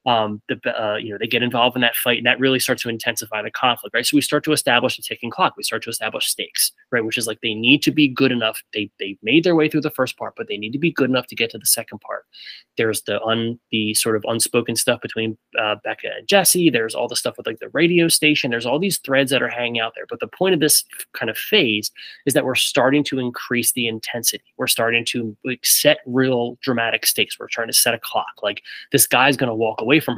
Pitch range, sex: 115-140 Hz, male